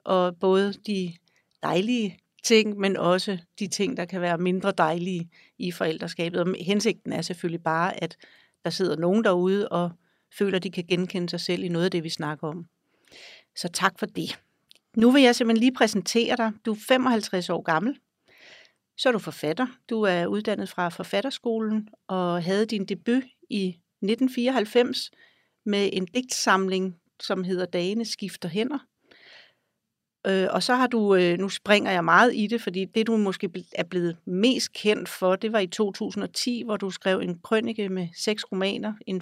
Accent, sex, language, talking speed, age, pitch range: native, female, Danish, 170 wpm, 60-79, 180-225 Hz